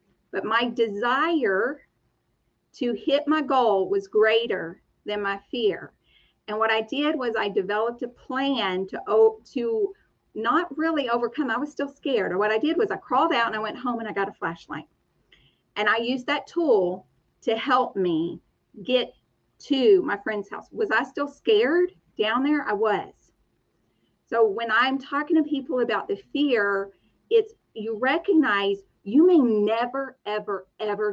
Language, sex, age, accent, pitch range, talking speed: English, female, 40-59, American, 210-310 Hz, 165 wpm